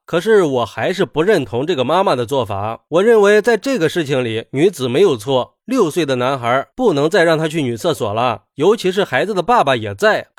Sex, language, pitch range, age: male, Chinese, 145-210 Hz, 20-39